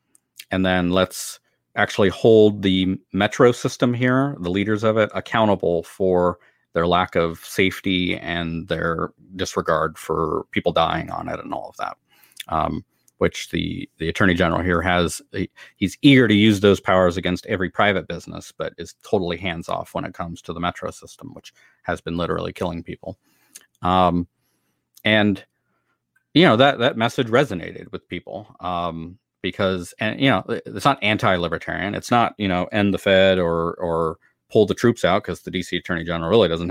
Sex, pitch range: male, 85-105 Hz